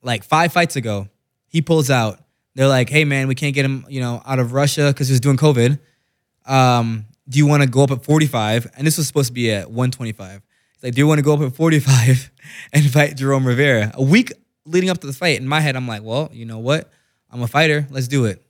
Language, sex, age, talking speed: English, male, 20-39, 250 wpm